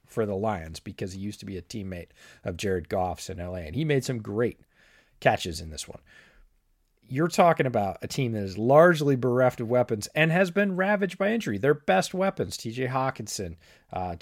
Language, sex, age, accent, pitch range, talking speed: English, male, 30-49, American, 100-145 Hz, 200 wpm